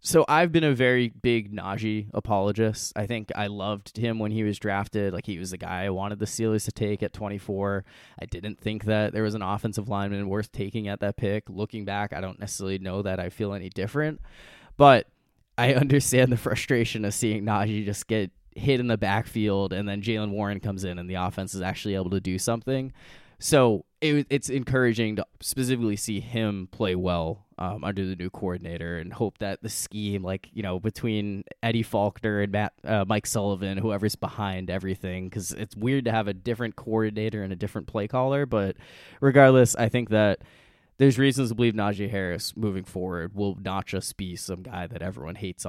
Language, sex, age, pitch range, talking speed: English, male, 20-39, 95-115 Hz, 200 wpm